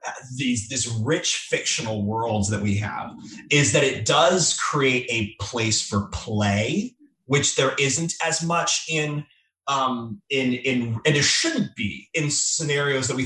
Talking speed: 155 wpm